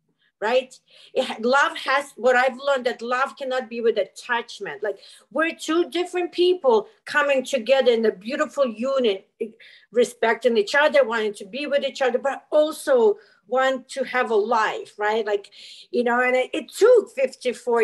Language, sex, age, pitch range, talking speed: English, female, 50-69, 230-290 Hz, 160 wpm